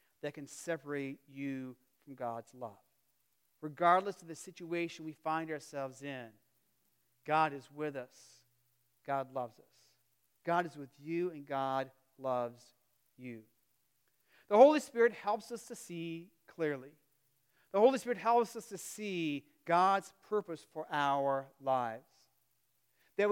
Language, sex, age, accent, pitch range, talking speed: English, male, 40-59, American, 145-180 Hz, 130 wpm